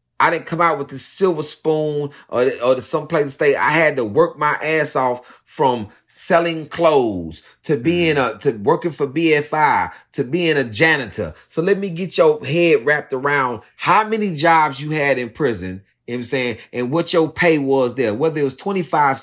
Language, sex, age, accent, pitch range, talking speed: English, male, 30-49, American, 130-175 Hz, 205 wpm